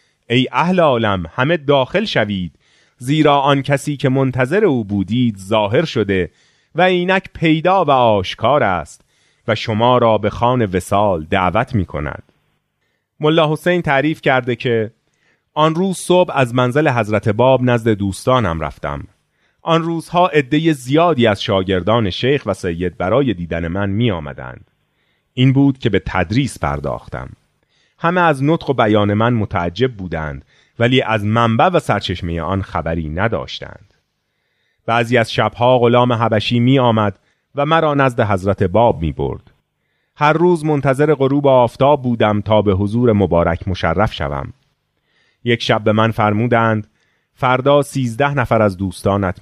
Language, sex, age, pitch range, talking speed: Persian, male, 30-49, 100-140 Hz, 140 wpm